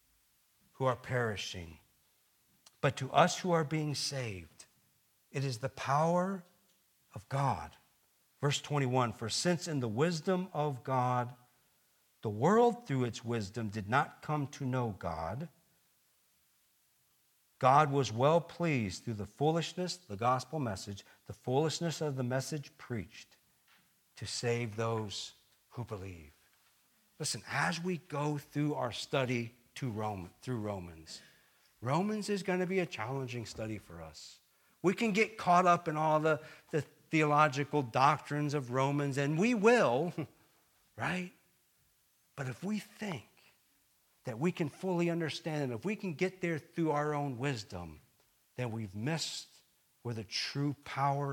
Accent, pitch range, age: American, 115-160 Hz, 50-69